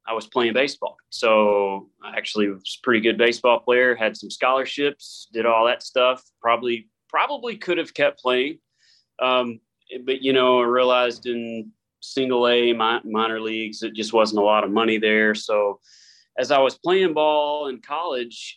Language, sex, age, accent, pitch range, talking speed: English, male, 30-49, American, 110-140 Hz, 170 wpm